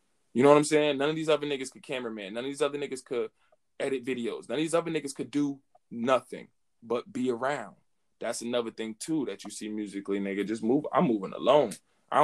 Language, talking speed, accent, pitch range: English, 225 wpm, American, 110-150 Hz